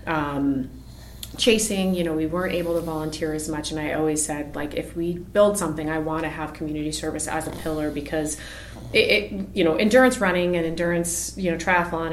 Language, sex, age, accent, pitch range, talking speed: English, female, 30-49, American, 155-180 Hz, 205 wpm